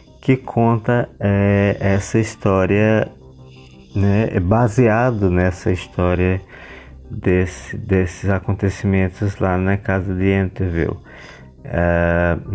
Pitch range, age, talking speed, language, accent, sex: 95-115 Hz, 20-39, 90 wpm, Portuguese, Brazilian, male